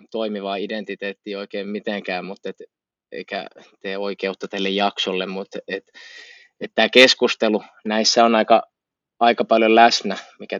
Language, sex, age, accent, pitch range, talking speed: Finnish, male, 20-39, native, 105-130 Hz, 120 wpm